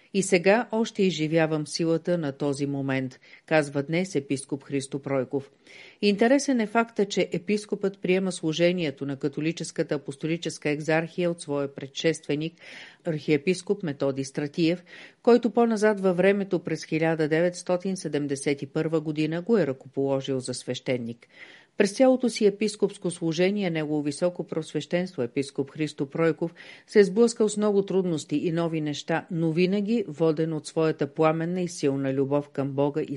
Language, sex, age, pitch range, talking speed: Bulgarian, female, 50-69, 145-185 Hz, 135 wpm